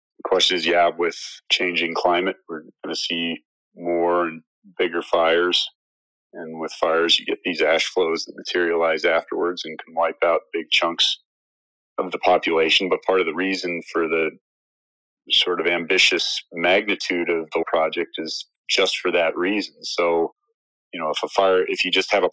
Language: English